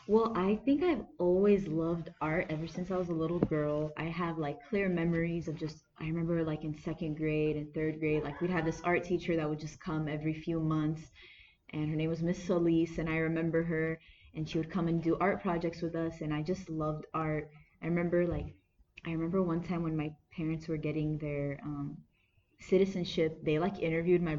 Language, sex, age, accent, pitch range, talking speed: English, female, 20-39, American, 155-180 Hz, 215 wpm